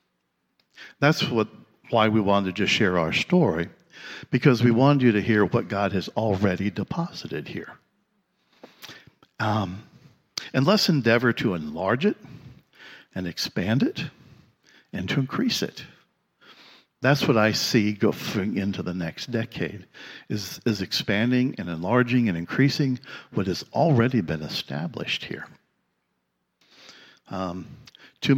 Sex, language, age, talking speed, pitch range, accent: male, English, 60-79, 125 wpm, 95-130 Hz, American